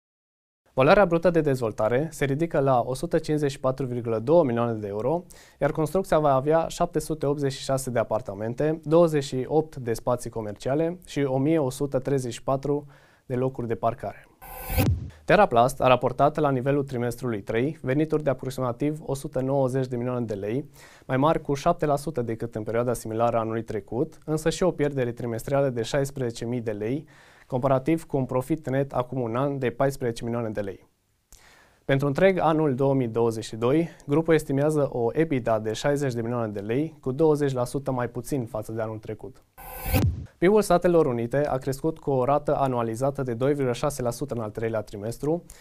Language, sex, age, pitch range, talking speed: Romanian, male, 20-39, 120-150 Hz, 150 wpm